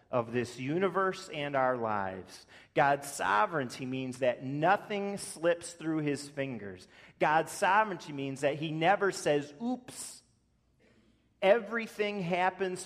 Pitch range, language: 125-165 Hz, English